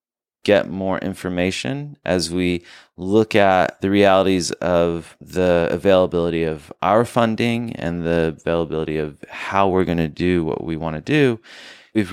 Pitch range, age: 85-105 Hz, 30-49